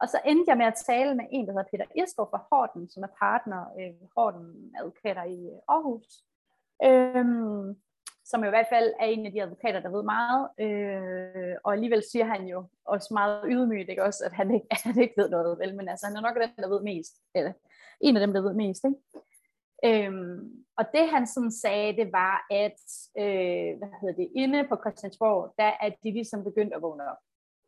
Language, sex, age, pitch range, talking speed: Danish, female, 30-49, 195-245 Hz, 210 wpm